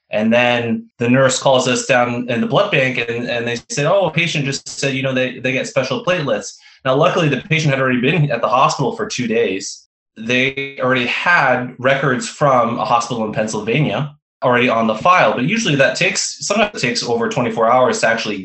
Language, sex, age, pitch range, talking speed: English, male, 20-39, 115-135 Hz, 210 wpm